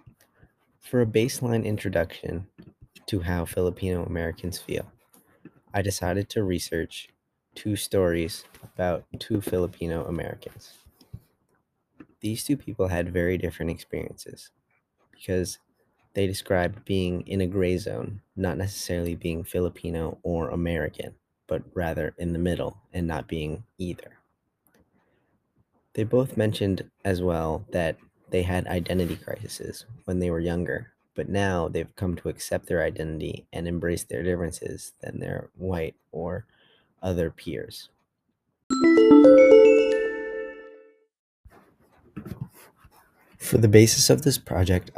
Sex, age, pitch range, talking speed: male, 20-39, 85-105 Hz, 115 wpm